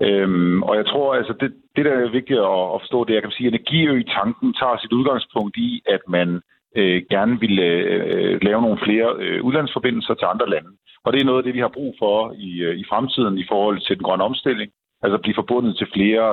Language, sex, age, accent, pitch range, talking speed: Danish, male, 50-69, native, 90-125 Hz, 235 wpm